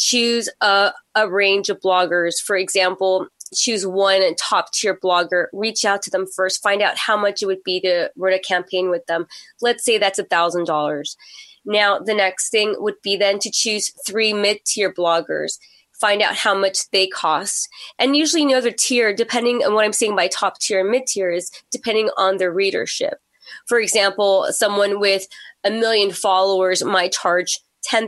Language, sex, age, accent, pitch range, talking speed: English, female, 20-39, American, 185-220 Hz, 175 wpm